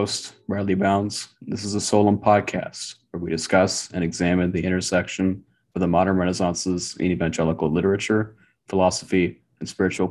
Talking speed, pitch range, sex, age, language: 140 wpm, 90-100 Hz, male, 30-49, English